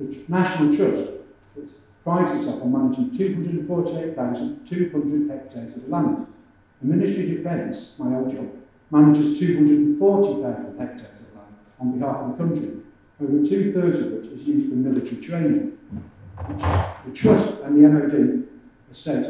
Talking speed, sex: 140 wpm, male